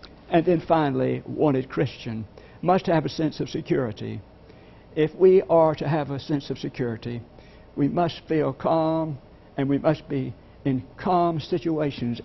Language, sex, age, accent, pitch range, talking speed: English, male, 60-79, American, 130-155 Hz, 150 wpm